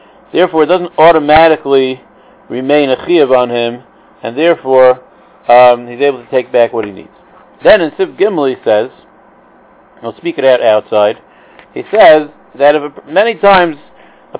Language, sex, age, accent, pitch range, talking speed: English, male, 50-69, American, 135-175 Hz, 160 wpm